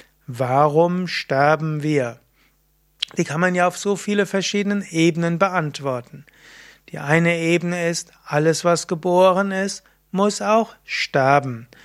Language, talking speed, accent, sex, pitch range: German, 120 wpm, German, male, 150-185 Hz